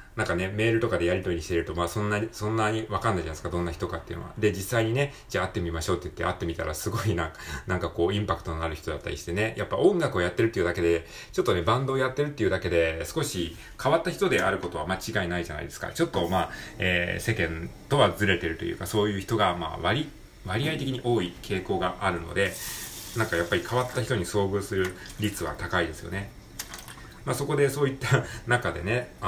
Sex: male